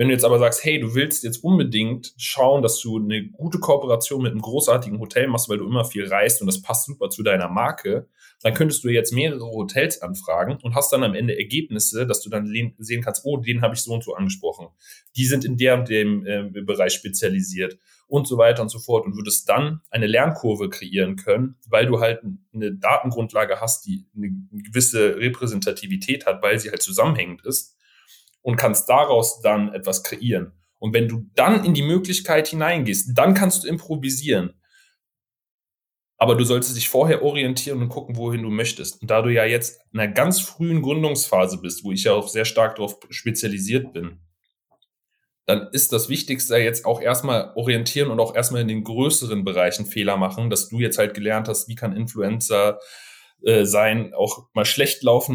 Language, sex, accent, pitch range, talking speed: German, male, German, 110-140 Hz, 190 wpm